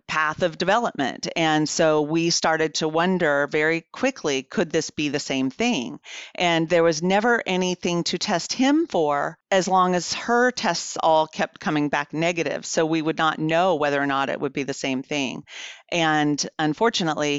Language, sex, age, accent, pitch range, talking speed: English, female, 40-59, American, 140-165 Hz, 180 wpm